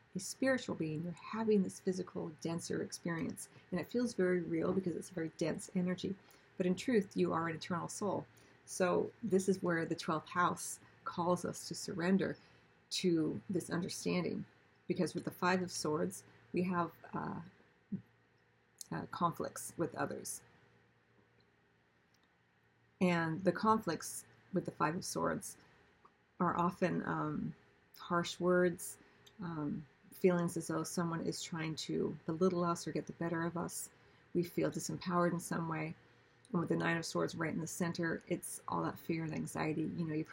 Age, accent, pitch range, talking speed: 40-59, American, 155-180 Hz, 160 wpm